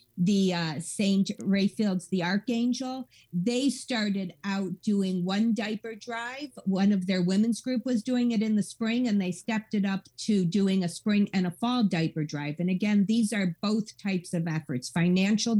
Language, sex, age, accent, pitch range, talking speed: English, female, 50-69, American, 180-225 Hz, 180 wpm